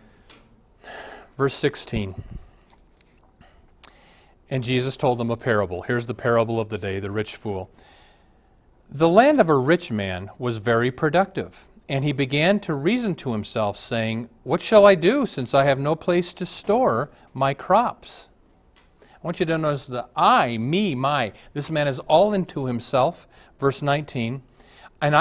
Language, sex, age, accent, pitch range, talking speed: English, male, 40-59, American, 120-170 Hz, 155 wpm